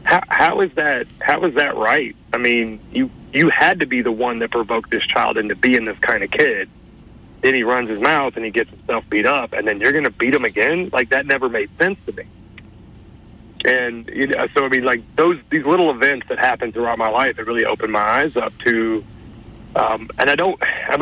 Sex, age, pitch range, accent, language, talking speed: male, 40-59, 115-140 Hz, American, English, 225 wpm